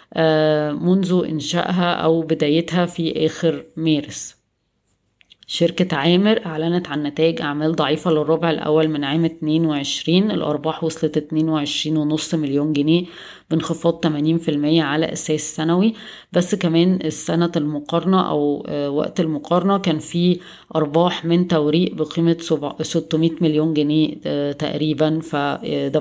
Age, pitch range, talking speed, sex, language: 20-39, 155-170 Hz, 110 wpm, female, Arabic